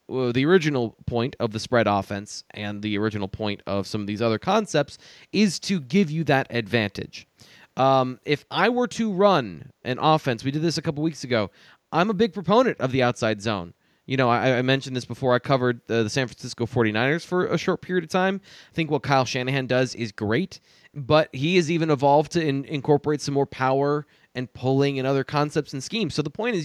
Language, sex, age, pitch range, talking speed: English, male, 20-39, 120-155 Hz, 215 wpm